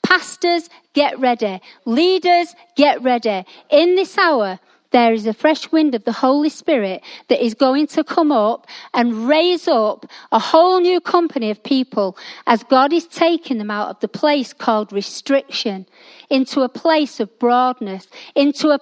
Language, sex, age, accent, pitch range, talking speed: English, female, 40-59, British, 220-310 Hz, 165 wpm